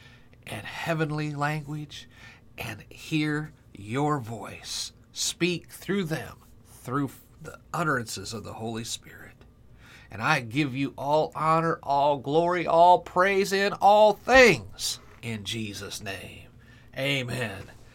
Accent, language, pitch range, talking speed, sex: American, English, 120-150 Hz, 115 wpm, male